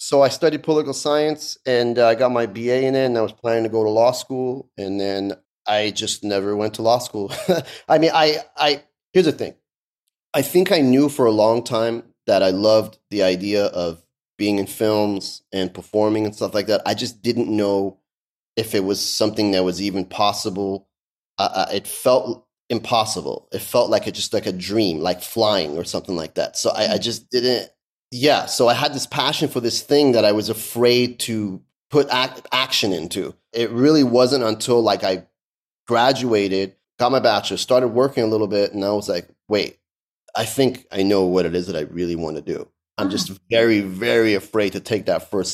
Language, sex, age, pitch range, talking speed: English, male, 30-49, 100-125 Hz, 205 wpm